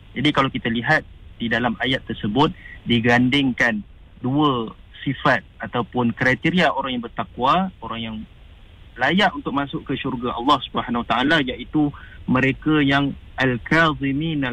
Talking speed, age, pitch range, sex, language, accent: 120 wpm, 30-49, 115-145 Hz, male, English, Indonesian